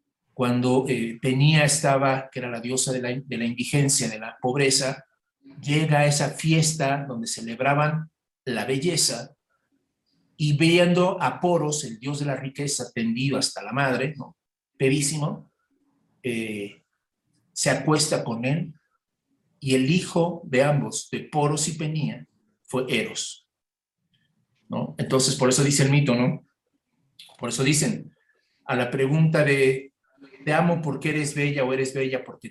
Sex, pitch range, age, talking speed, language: male, 130-160 Hz, 50-69, 145 wpm, Spanish